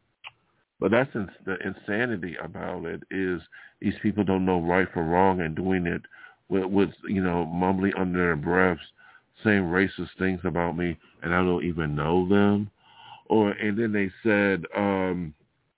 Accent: American